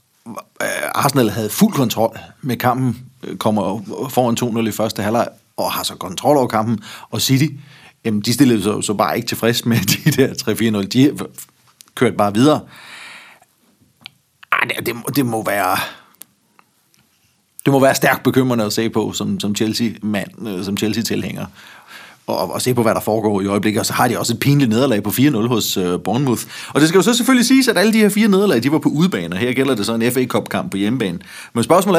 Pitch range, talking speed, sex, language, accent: 110-150 Hz, 195 wpm, male, Danish, native